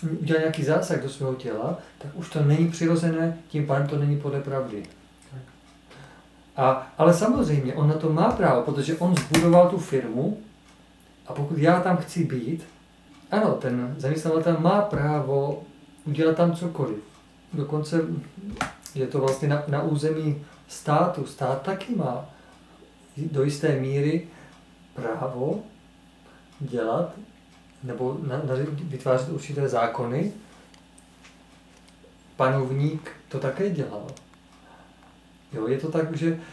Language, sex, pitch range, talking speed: Czech, male, 130-160 Hz, 115 wpm